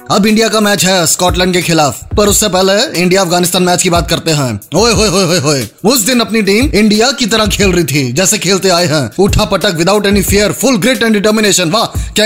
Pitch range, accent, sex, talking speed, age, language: 180-220 Hz, native, male, 235 wpm, 20-39, Hindi